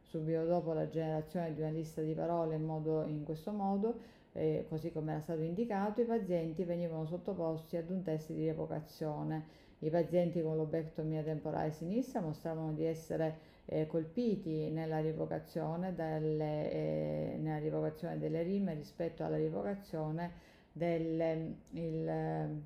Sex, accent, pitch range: female, native, 155-175 Hz